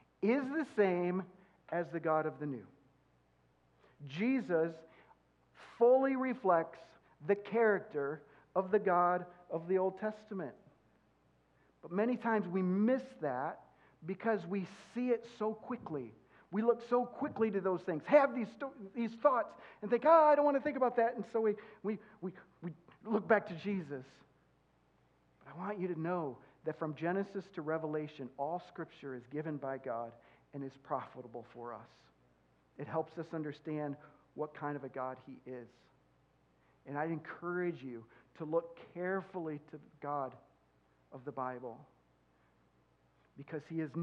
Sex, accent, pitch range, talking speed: male, American, 135-200 Hz, 160 wpm